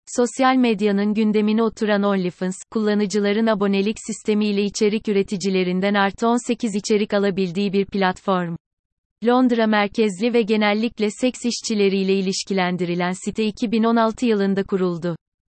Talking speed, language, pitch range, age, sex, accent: 105 wpm, Turkish, 195-225 Hz, 30-49, female, native